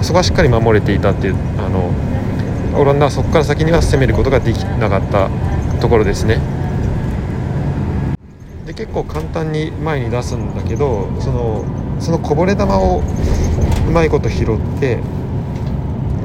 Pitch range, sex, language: 90-125 Hz, male, Japanese